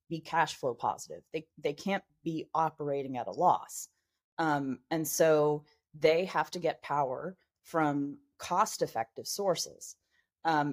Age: 30-49